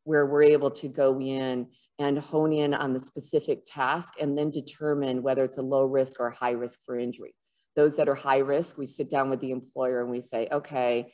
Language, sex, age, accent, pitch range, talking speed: English, female, 30-49, American, 130-150 Hz, 225 wpm